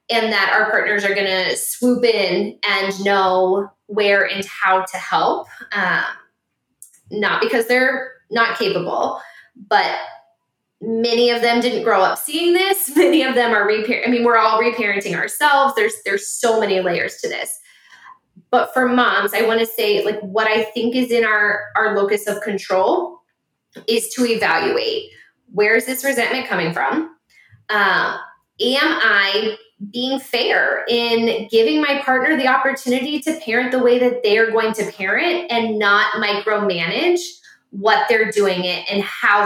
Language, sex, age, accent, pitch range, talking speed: English, female, 10-29, American, 205-265 Hz, 160 wpm